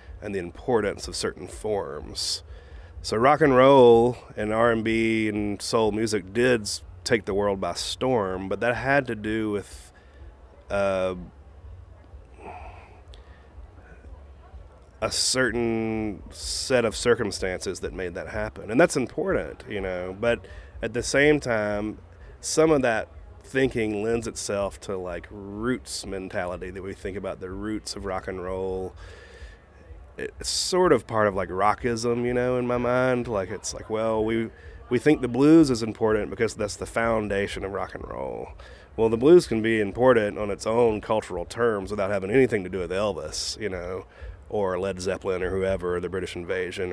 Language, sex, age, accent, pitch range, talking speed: English, male, 30-49, American, 90-115 Hz, 160 wpm